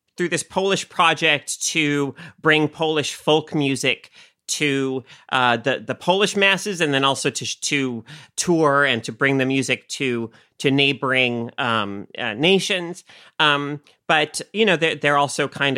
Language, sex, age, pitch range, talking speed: English, male, 30-49, 135-175 Hz, 150 wpm